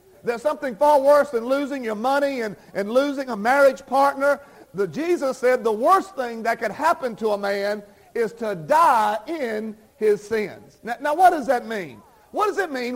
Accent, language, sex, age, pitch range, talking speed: American, English, male, 40-59, 215-285 Hz, 195 wpm